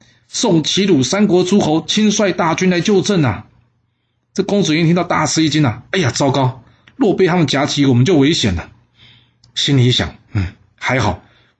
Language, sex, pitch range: Chinese, male, 115-140 Hz